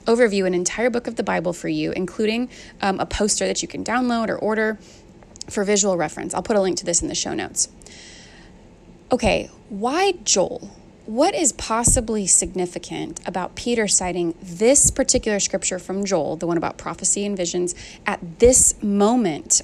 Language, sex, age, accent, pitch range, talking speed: English, female, 20-39, American, 180-230 Hz, 170 wpm